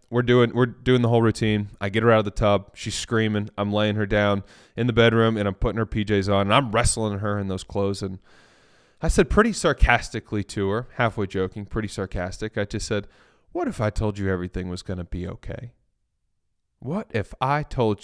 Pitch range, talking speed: 95-120 Hz, 215 wpm